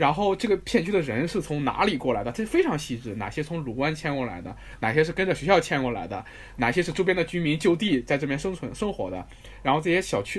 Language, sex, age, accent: Chinese, male, 20-39, native